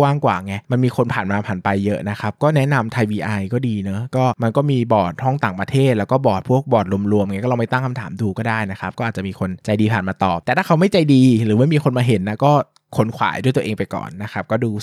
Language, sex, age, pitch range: Thai, male, 20-39, 100-125 Hz